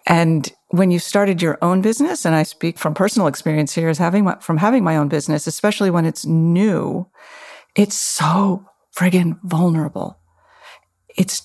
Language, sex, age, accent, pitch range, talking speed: English, female, 50-69, American, 160-190 Hz, 160 wpm